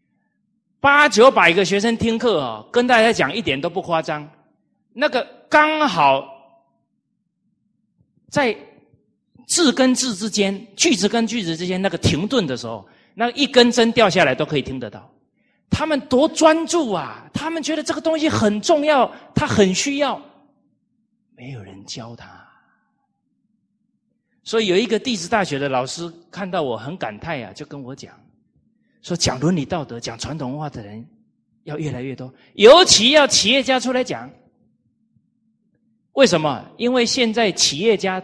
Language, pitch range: Chinese, 150-235 Hz